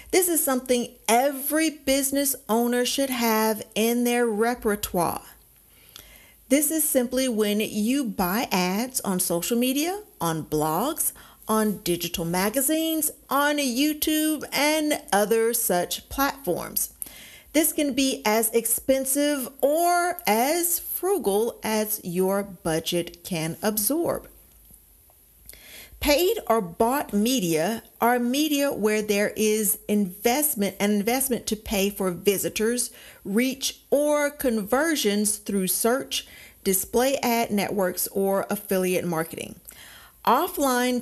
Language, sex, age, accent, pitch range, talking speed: English, female, 50-69, American, 195-265 Hz, 105 wpm